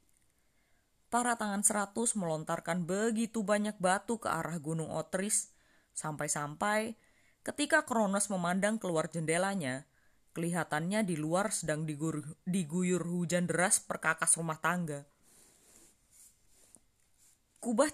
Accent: native